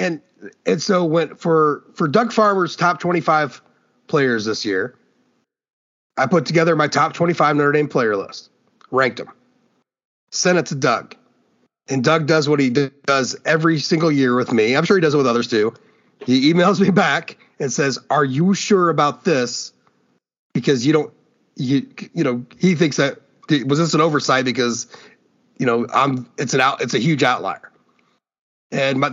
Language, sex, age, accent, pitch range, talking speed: English, male, 30-49, American, 135-175 Hz, 180 wpm